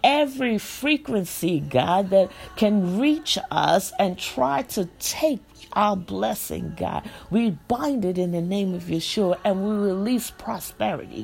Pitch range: 185-245 Hz